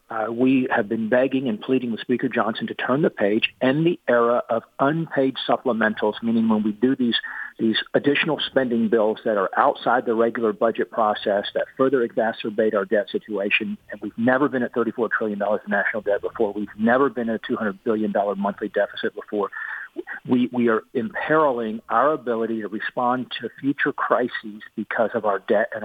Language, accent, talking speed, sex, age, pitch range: English, American, 185 wpm, male, 50-69, 110-135 Hz